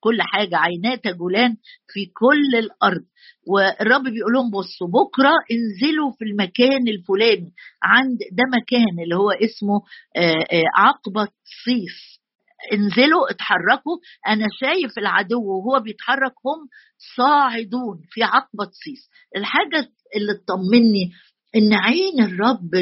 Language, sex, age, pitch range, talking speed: Arabic, female, 50-69, 195-255 Hz, 110 wpm